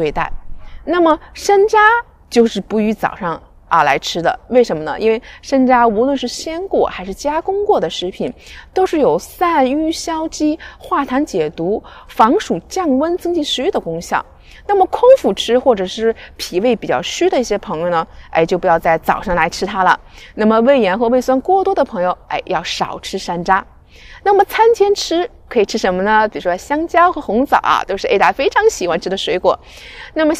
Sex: female